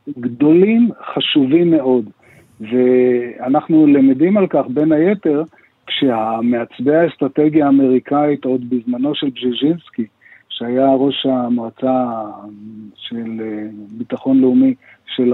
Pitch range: 125-150 Hz